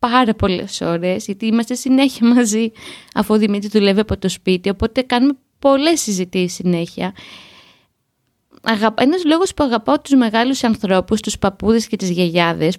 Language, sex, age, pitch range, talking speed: Greek, female, 20-39, 195-255 Hz, 145 wpm